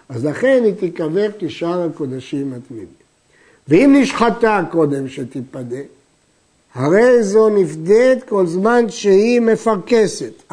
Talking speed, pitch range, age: 105 wpm, 180-240 Hz, 60-79